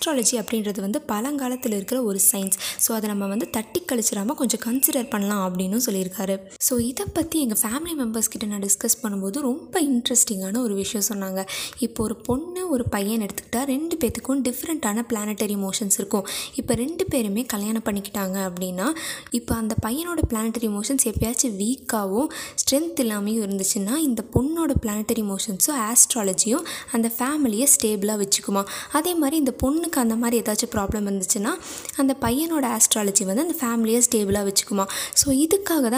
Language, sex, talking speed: Tamil, female, 125 wpm